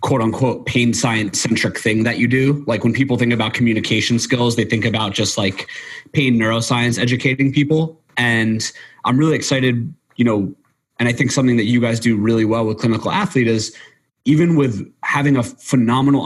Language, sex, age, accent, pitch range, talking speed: English, male, 30-49, American, 115-135 Hz, 185 wpm